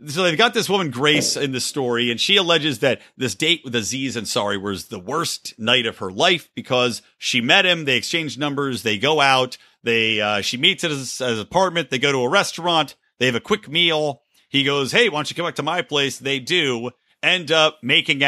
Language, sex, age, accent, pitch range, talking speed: English, male, 40-59, American, 120-160 Hz, 235 wpm